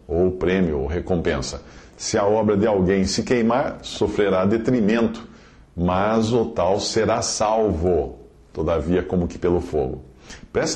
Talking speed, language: 135 wpm, English